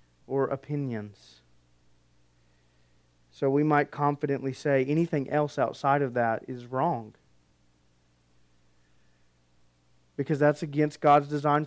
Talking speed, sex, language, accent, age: 100 wpm, male, English, American, 30-49